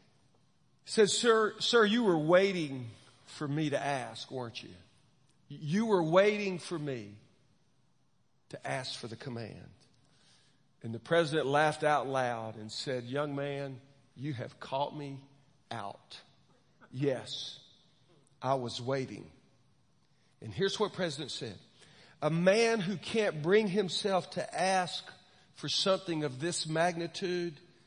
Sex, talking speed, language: male, 130 wpm, English